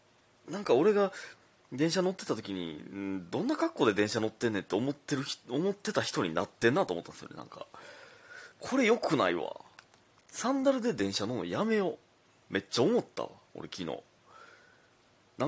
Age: 30-49